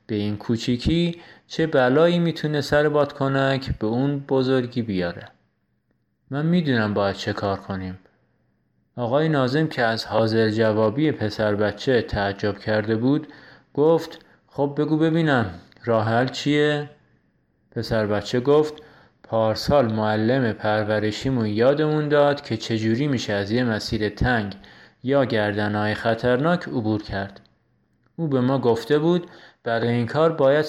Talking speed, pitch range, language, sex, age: 125 wpm, 110-145 Hz, Persian, male, 30-49